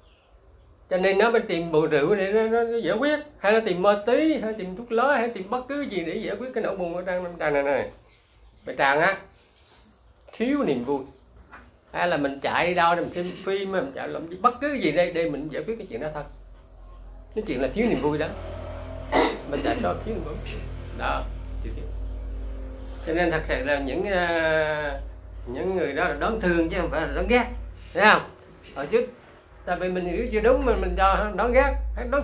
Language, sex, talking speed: Vietnamese, male, 225 wpm